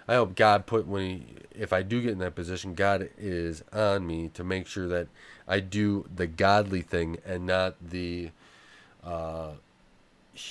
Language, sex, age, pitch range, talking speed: English, male, 30-49, 90-105 Hz, 170 wpm